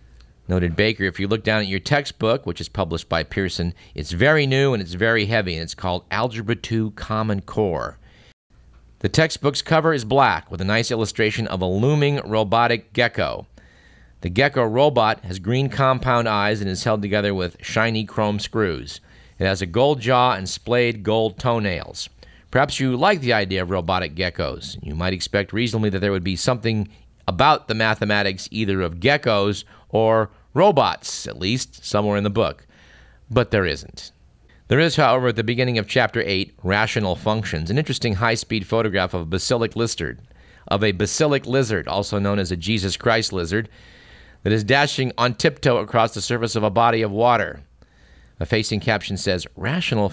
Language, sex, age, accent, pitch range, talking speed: English, male, 50-69, American, 95-120 Hz, 175 wpm